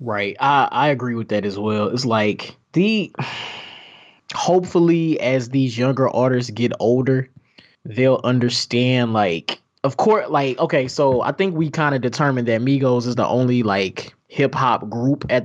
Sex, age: male, 20-39